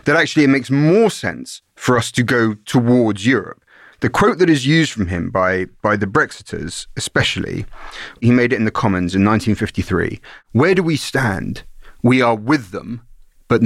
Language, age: English, 30-49